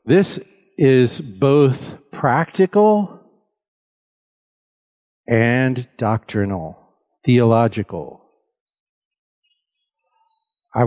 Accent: American